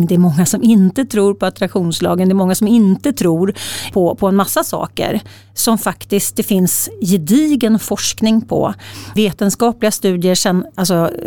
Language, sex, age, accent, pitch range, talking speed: Swedish, female, 40-59, native, 180-225 Hz, 160 wpm